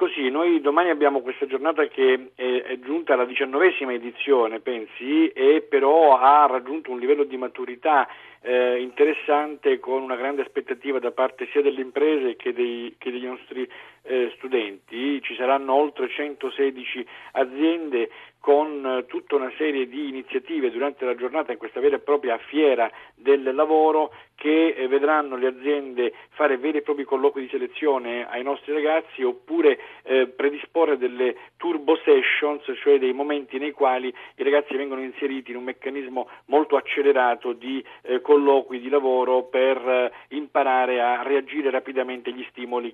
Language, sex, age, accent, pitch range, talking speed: Italian, male, 50-69, native, 130-175 Hz, 145 wpm